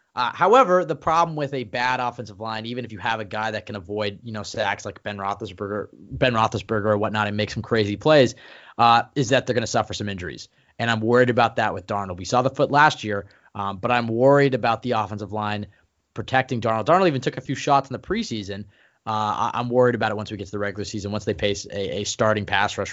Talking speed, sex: 250 wpm, male